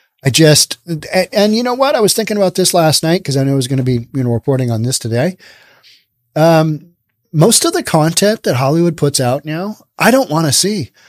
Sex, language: male, English